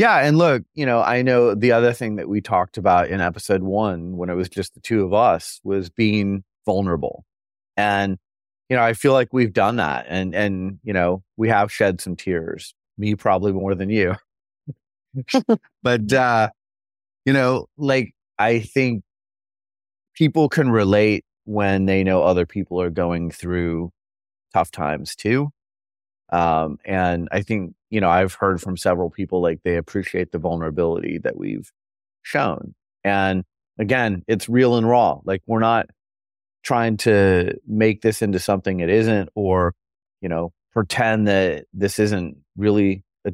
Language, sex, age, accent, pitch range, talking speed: English, male, 30-49, American, 90-115 Hz, 160 wpm